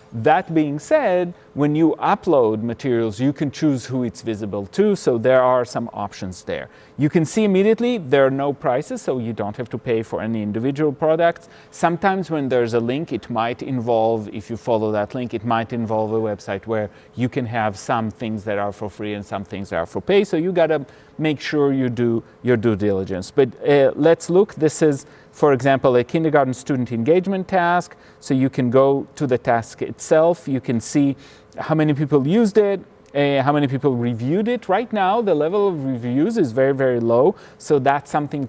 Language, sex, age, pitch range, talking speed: English, male, 30-49, 115-150 Hz, 205 wpm